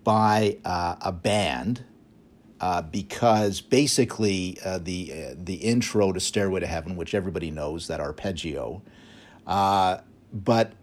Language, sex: English, male